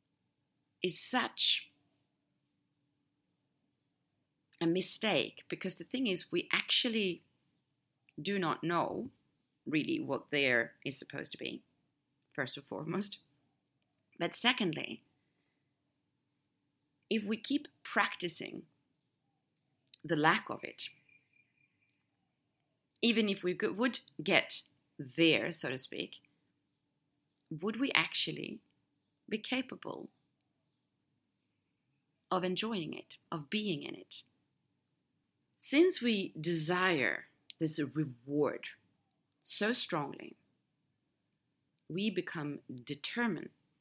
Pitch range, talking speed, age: 145-200 Hz, 90 wpm, 40-59